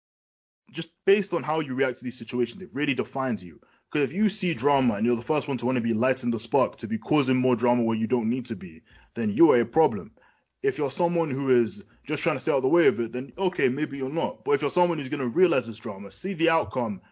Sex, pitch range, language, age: male, 120-165 Hz, English, 20-39